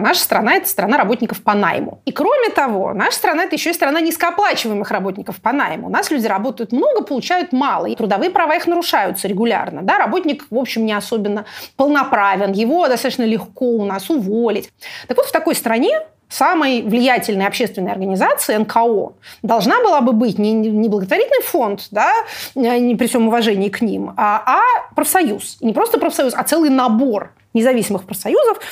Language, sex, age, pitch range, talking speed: Russian, female, 30-49, 220-330 Hz, 175 wpm